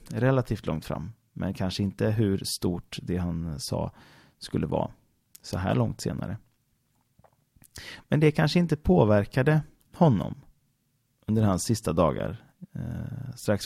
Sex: male